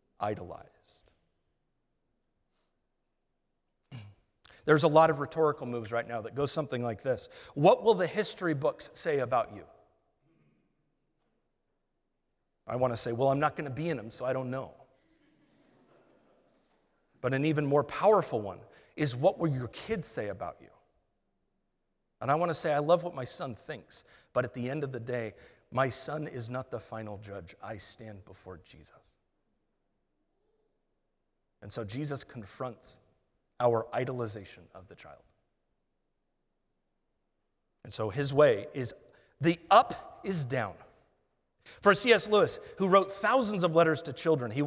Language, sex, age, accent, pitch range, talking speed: English, male, 40-59, American, 120-170 Hz, 150 wpm